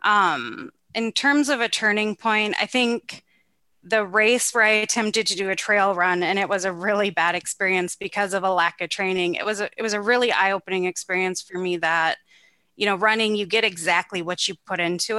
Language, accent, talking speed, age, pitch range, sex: English, American, 215 wpm, 20-39, 185-215 Hz, female